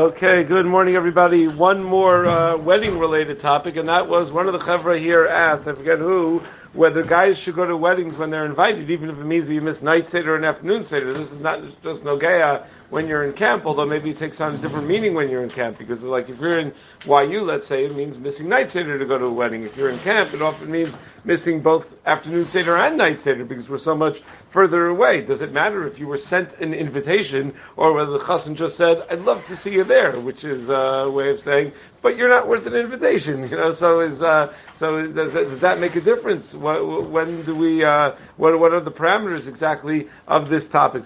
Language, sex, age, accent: English, male, 50-69, American